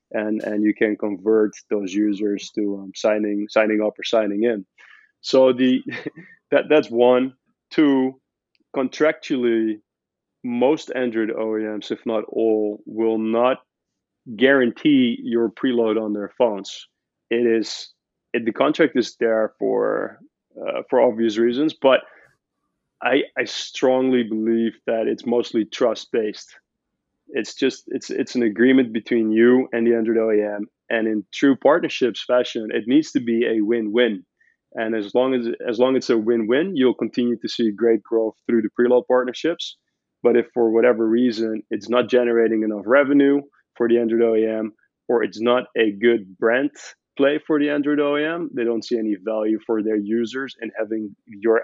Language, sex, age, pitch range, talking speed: English, male, 20-39, 110-125 Hz, 155 wpm